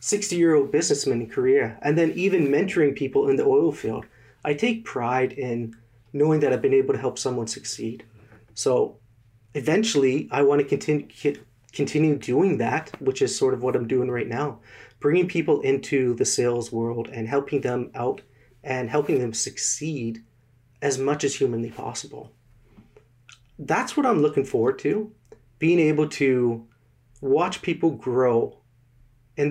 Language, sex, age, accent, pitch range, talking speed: English, male, 30-49, American, 120-165 Hz, 160 wpm